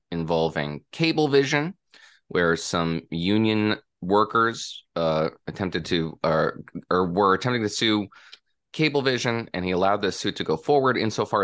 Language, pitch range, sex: English, 85-110 Hz, male